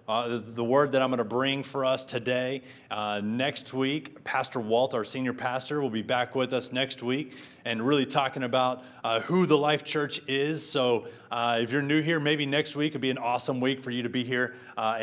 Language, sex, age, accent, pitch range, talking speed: English, male, 30-49, American, 120-150 Hz, 225 wpm